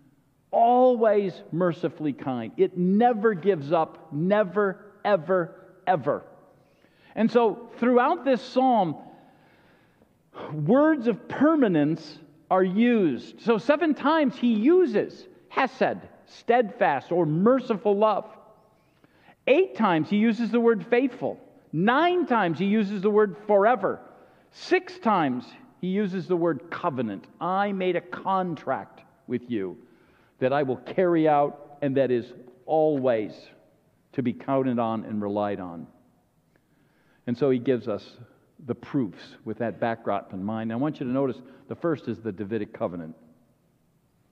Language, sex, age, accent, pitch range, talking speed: English, male, 50-69, American, 135-220 Hz, 130 wpm